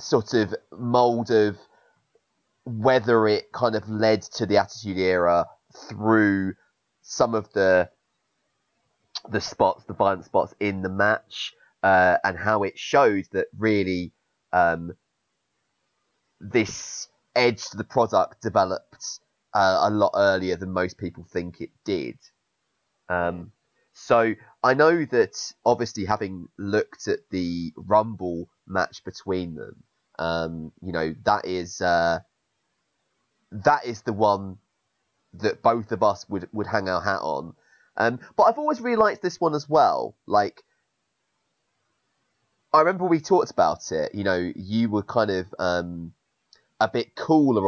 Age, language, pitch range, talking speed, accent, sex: 30-49, English, 90-115 Hz, 140 wpm, British, male